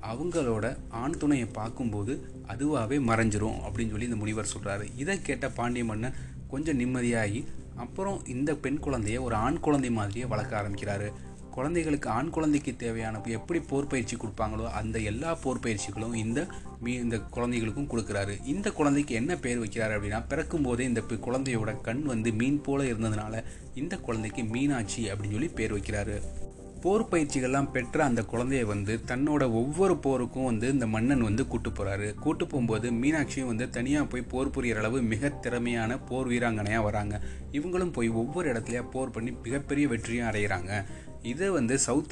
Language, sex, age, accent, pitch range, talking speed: Tamil, male, 30-49, native, 110-135 Hz, 150 wpm